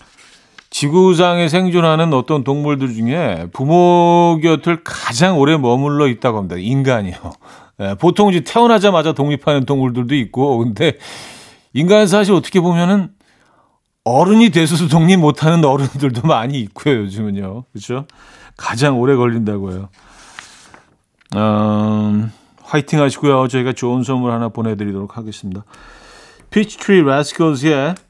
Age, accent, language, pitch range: 40-59, native, Korean, 110-165 Hz